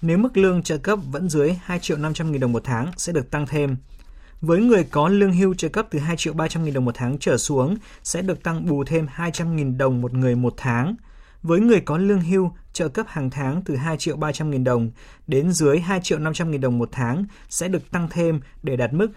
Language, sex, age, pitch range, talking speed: Vietnamese, male, 20-39, 135-170 Hz, 245 wpm